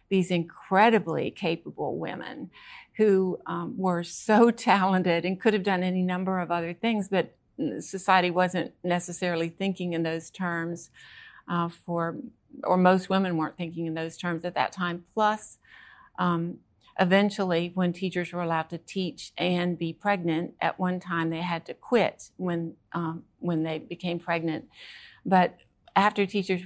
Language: English